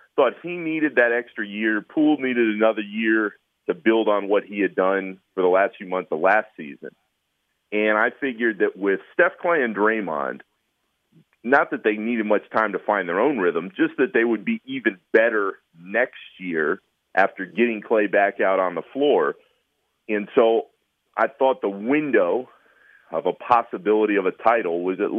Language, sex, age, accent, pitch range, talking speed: English, male, 40-59, American, 100-150 Hz, 180 wpm